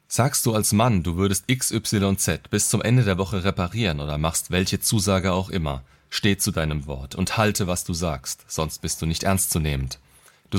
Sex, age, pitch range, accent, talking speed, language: male, 30-49, 80-110 Hz, German, 195 wpm, German